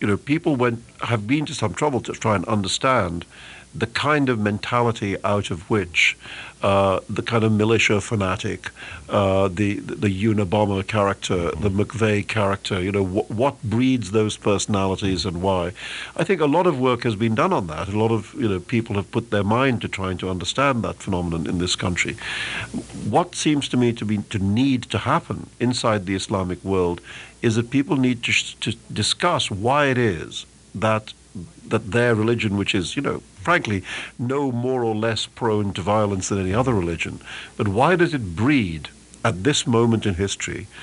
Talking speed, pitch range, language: 190 wpm, 95-120 Hz, English